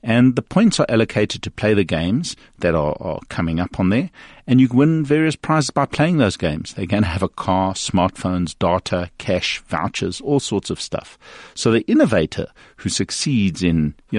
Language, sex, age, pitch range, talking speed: English, male, 50-69, 95-130 Hz, 200 wpm